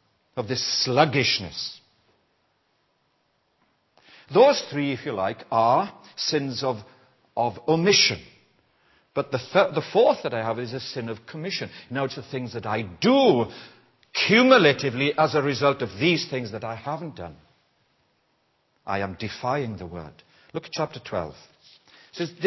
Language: English